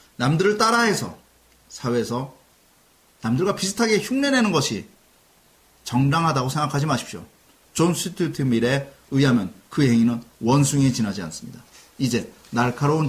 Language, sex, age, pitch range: Korean, male, 30-49, 120-190 Hz